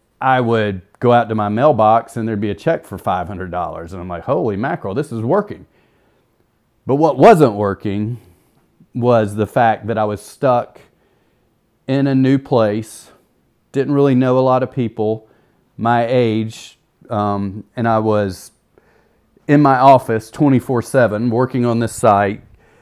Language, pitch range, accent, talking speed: English, 105-130 Hz, American, 155 wpm